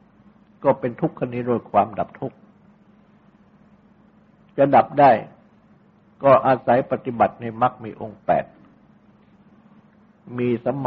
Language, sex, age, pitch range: Thai, male, 60-79, 125-205 Hz